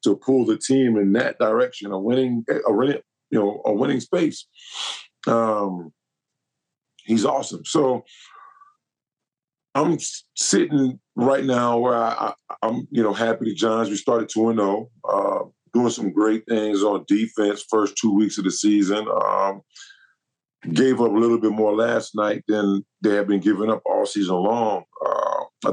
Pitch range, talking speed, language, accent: 105-120 Hz, 160 wpm, English, American